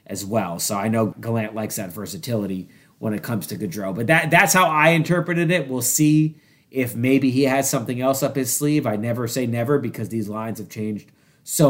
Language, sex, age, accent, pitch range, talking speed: English, male, 30-49, American, 115-150 Hz, 215 wpm